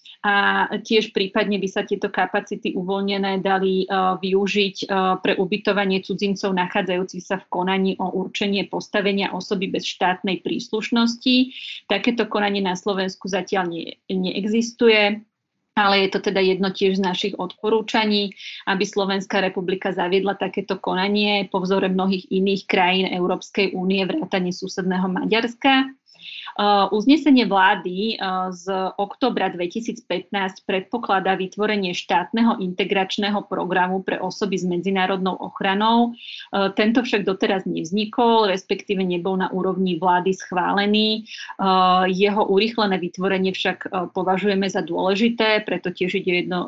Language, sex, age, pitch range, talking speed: Slovak, female, 30-49, 185-210 Hz, 125 wpm